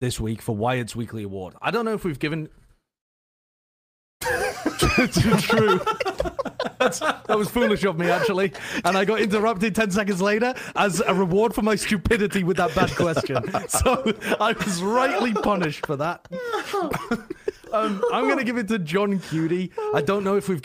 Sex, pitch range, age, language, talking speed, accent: male, 125-190 Hz, 30-49, English, 165 wpm, British